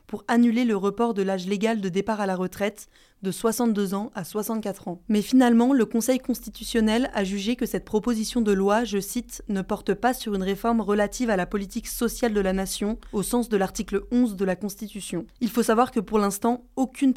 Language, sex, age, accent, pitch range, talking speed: French, female, 20-39, French, 195-230 Hz, 220 wpm